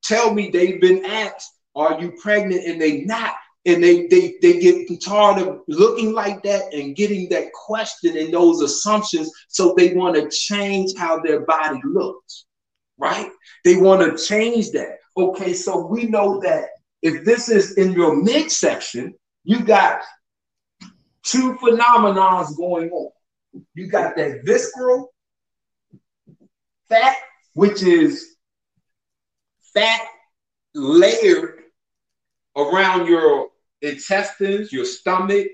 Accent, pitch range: American, 185-285 Hz